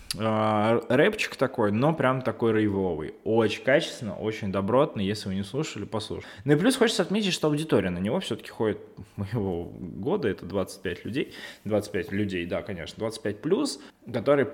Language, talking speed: Russian, 155 wpm